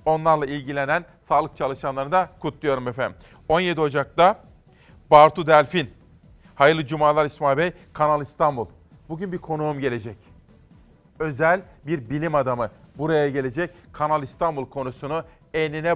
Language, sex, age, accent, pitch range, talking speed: Turkish, male, 40-59, native, 135-160 Hz, 115 wpm